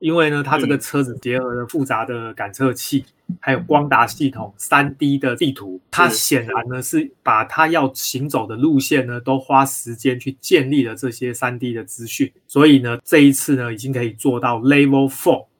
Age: 20-39